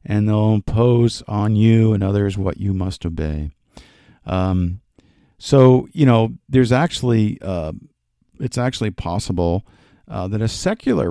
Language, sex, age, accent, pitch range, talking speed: English, male, 50-69, American, 90-115 Hz, 135 wpm